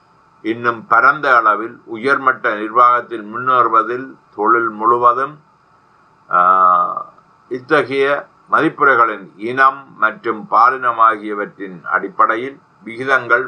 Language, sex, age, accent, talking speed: Tamil, male, 60-79, native, 65 wpm